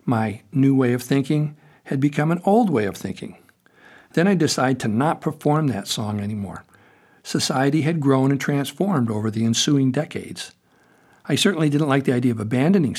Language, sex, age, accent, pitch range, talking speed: English, male, 60-79, American, 120-165 Hz, 175 wpm